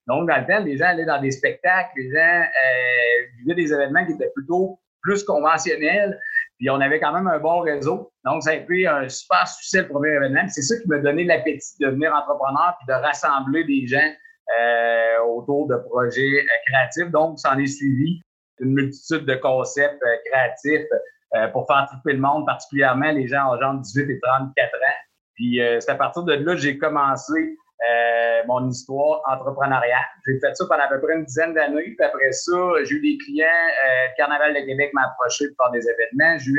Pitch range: 130-160 Hz